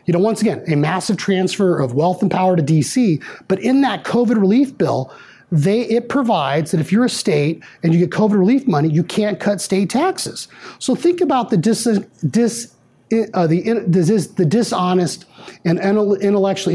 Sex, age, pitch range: male, 30-49, 170-225 Hz